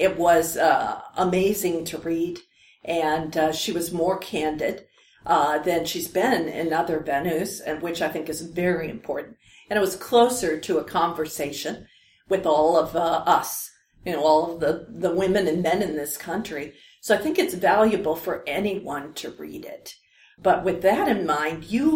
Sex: female